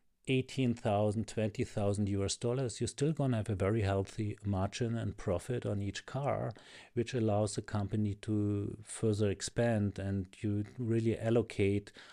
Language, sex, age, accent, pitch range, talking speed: English, male, 40-59, German, 100-120 Hz, 140 wpm